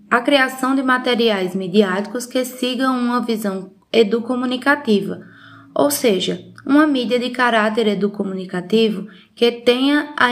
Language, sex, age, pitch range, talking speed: Portuguese, female, 20-39, 210-255 Hz, 115 wpm